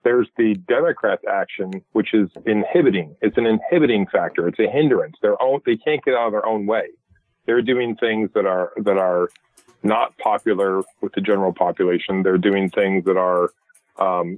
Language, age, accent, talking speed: English, 40-59, American, 180 wpm